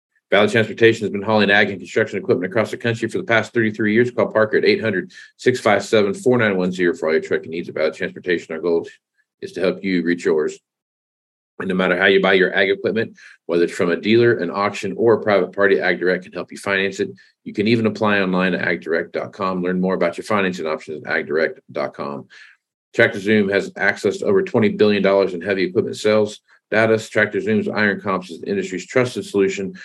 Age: 40-59